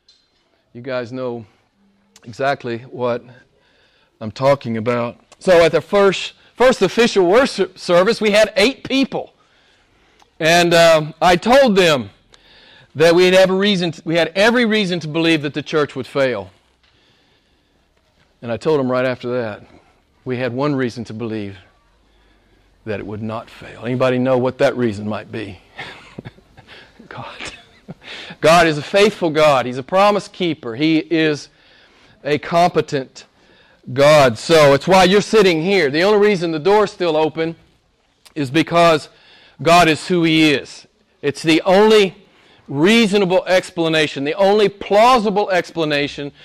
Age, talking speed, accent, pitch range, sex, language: 40-59, 145 wpm, American, 130-190 Hz, male, English